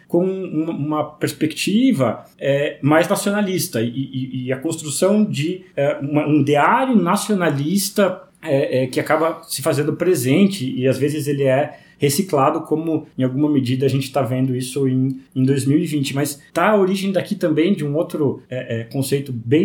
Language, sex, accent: Portuguese, male, Brazilian